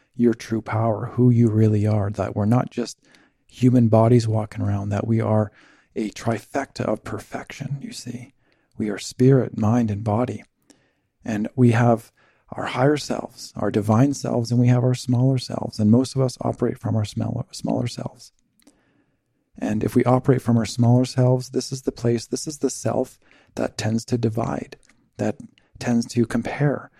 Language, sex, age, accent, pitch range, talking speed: English, male, 40-59, American, 110-125 Hz, 175 wpm